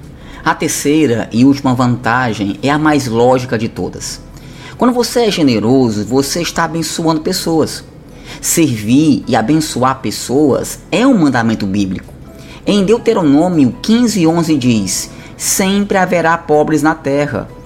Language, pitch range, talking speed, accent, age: Portuguese, 130-165 Hz, 120 wpm, Brazilian, 20-39